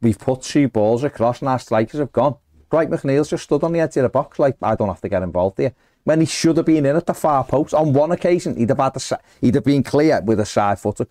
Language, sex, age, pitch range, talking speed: English, male, 40-59, 100-135 Hz, 285 wpm